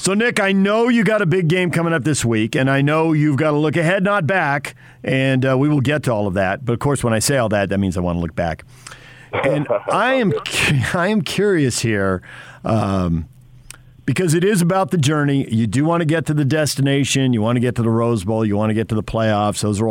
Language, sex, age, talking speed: English, male, 50-69, 260 wpm